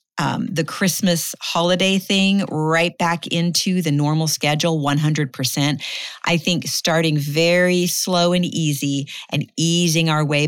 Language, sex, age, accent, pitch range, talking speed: English, female, 40-59, American, 150-180 Hz, 130 wpm